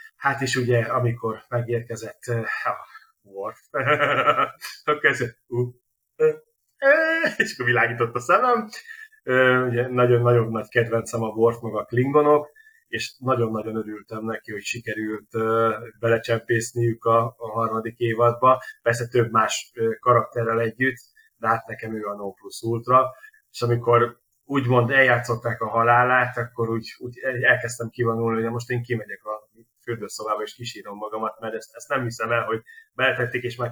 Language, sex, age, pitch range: Hungarian, male, 30-49, 115-130 Hz